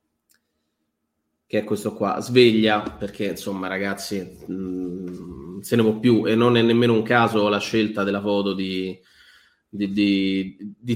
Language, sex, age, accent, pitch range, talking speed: Italian, male, 30-49, native, 105-125 Hz, 130 wpm